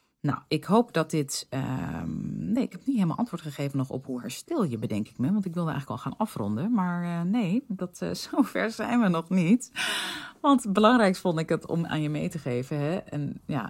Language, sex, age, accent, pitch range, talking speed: Dutch, female, 30-49, Dutch, 135-185 Hz, 230 wpm